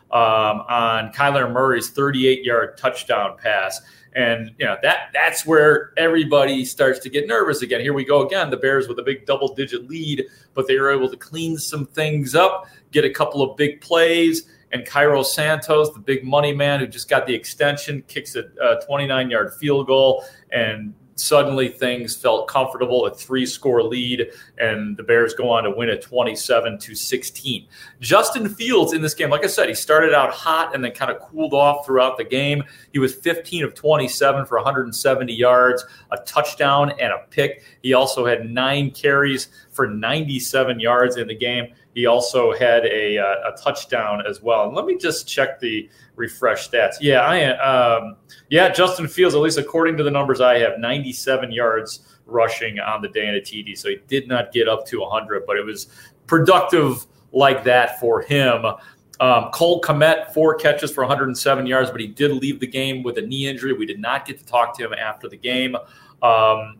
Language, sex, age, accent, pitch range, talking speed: English, male, 40-59, American, 125-150 Hz, 190 wpm